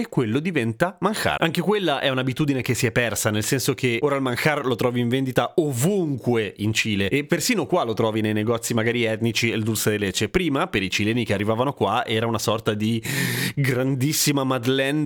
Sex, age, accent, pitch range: male, 30-49, native, 110-145 Hz